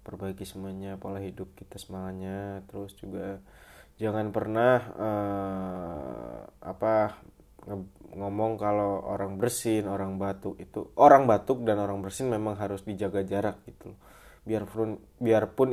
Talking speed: 120 wpm